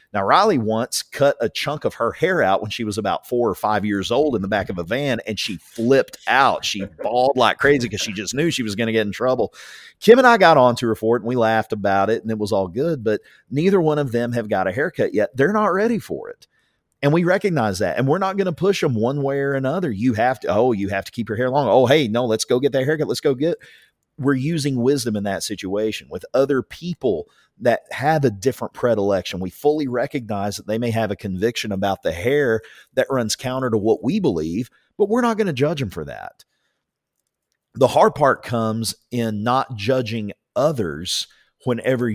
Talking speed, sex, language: 235 wpm, male, English